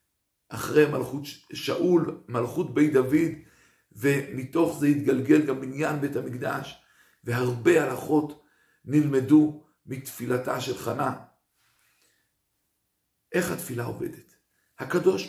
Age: 50-69